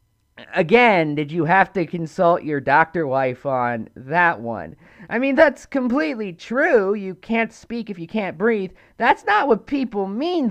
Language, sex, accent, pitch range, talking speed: English, male, American, 170-275 Hz, 165 wpm